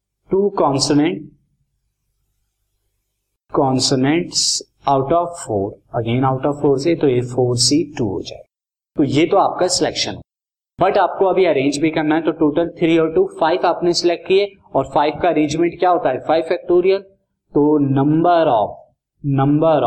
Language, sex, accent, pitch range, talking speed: Hindi, male, native, 130-160 Hz, 160 wpm